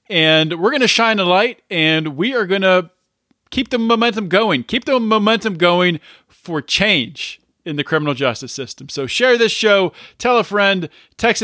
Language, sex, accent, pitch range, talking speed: English, male, American, 150-190 Hz, 185 wpm